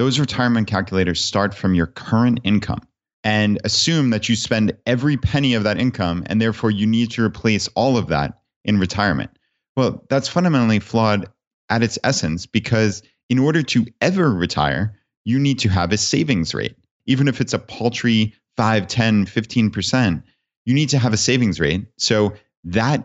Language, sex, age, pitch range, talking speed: English, male, 30-49, 95-120 Hz, 170 wpm